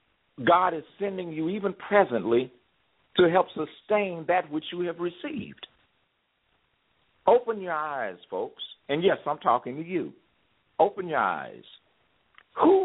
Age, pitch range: 50-69, 115-175 Hz